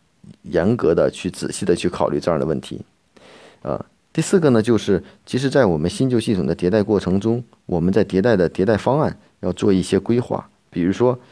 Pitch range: 95-130 Hz